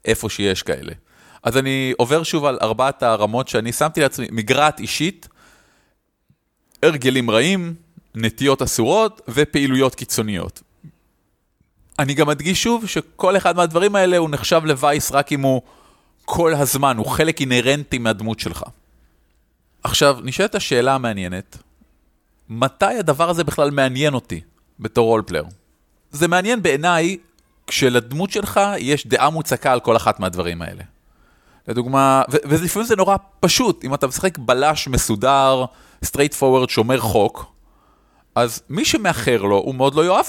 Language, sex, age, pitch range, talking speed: Hebrew, male, 30-49, 115-170 Hz, 135 wpm